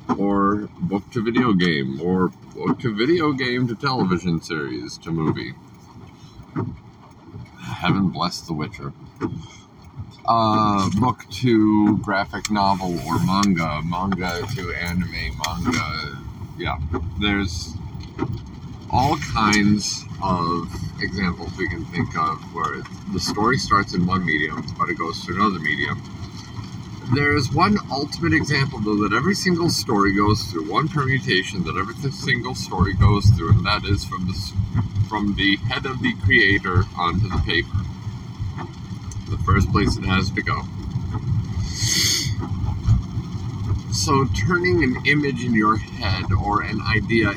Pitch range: 95-110 Hz